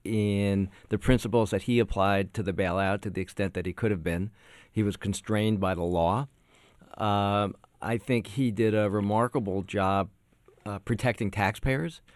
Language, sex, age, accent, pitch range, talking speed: English, male, 50-69, American, 95-115 Hz, 170 wpm